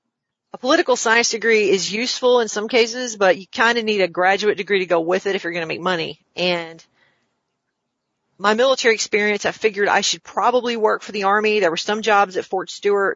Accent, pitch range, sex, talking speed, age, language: American, 180-215 Hz, female, 215 wpm, 40-59, English